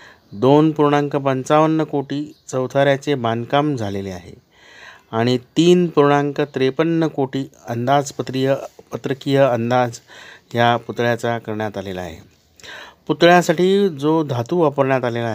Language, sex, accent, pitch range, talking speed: Marathi, male, native, 120-145 Hz, 100 wpm